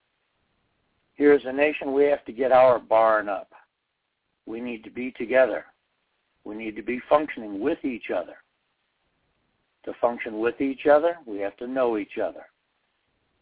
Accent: American